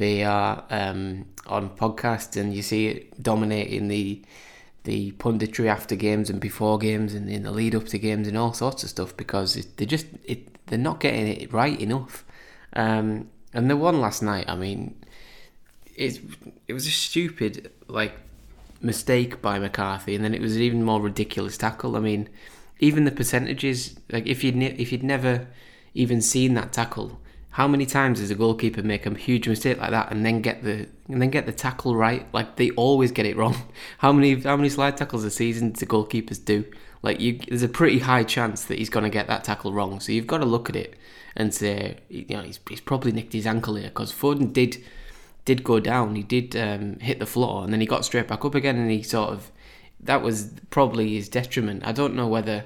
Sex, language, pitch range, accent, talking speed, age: male, English, 105-125 Hz, British, 210 wpm, 20-39